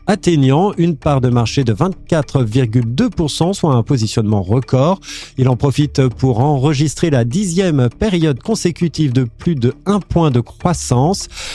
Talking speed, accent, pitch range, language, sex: 140 wpm, French, 130-170 Hz, French, male